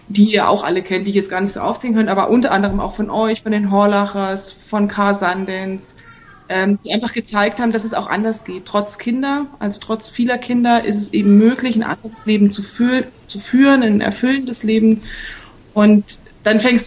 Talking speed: 205 wpm